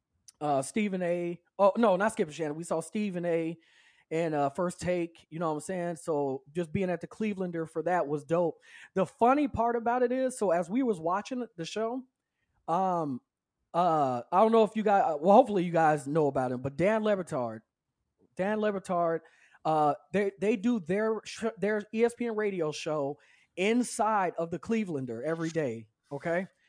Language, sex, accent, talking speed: English, male, American, 180 wpm